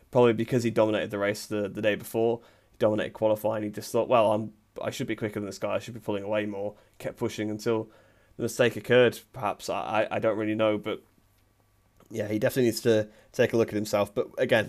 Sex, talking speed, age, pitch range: male, 235 wpm, 20-39, 105-115 Hz